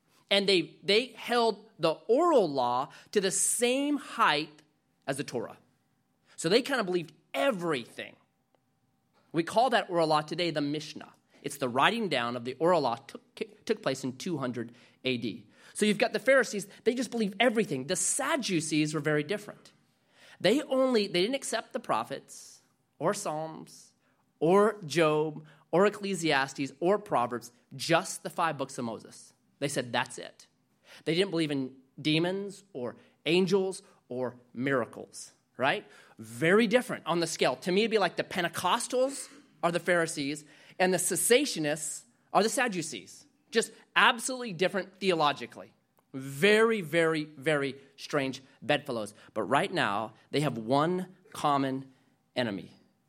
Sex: male